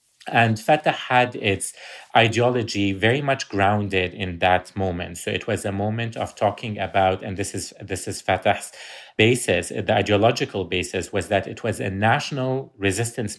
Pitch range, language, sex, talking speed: 95-115 Hz, English, male, 160 wpm